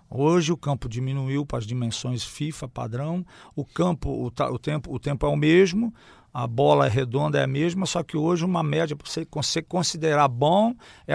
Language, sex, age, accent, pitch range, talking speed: Portuguese, male, 50-69, Brazilian, 125-165 Hz, 200 wpm